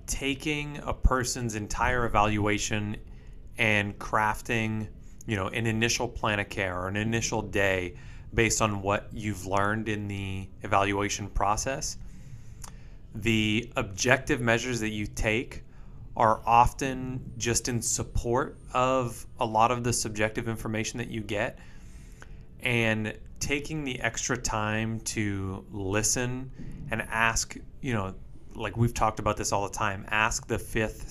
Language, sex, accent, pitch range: English, male, American, 100-115 Hz